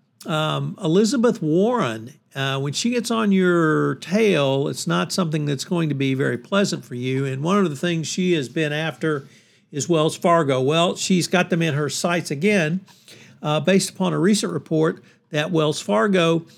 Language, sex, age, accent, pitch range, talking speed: English, male, 50-69, American, 145-185 Hz, 180 wpm